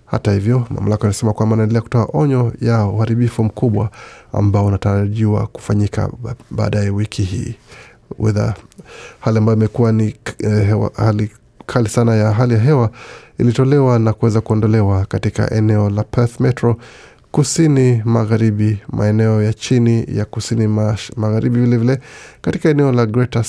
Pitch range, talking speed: 105-120 Hz, 140 wpm